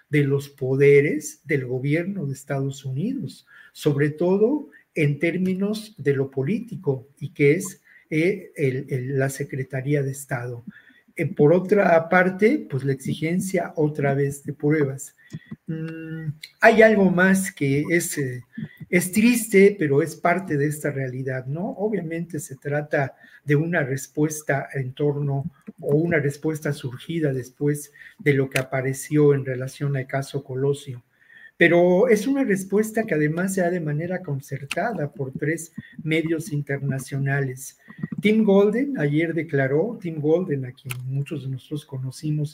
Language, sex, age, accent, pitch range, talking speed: Spanish, male, 50-69, Mexican, 140-175 Hz, 140 wpm